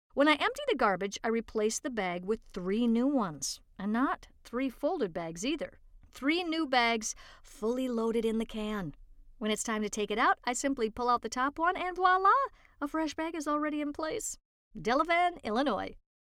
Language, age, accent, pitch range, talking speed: English, 50-69, American, 215-295 Hz, 190 wpm